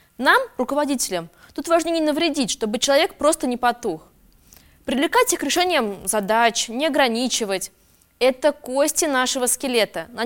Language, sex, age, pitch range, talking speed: Russian, female, 20-39, 230-310 Hz, 135 wpm